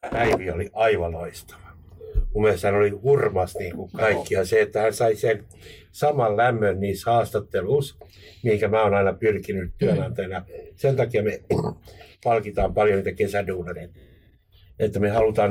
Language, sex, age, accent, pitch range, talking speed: Finnish, male, 60-79, native, 95-110 Hz, 140 wpm